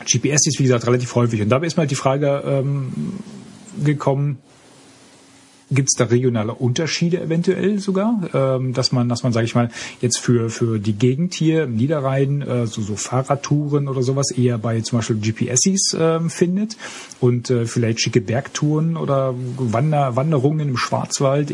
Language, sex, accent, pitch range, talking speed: German, male, German, 115-145 Hz, 170 wpm